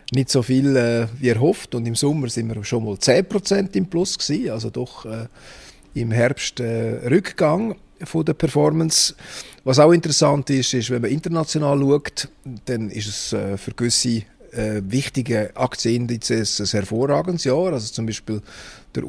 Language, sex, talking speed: German, male, 165 wpm